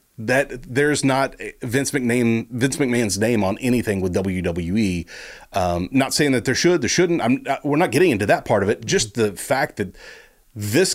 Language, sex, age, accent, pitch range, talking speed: English, male, 40-59, American, 95-130 Hz, 195 wpm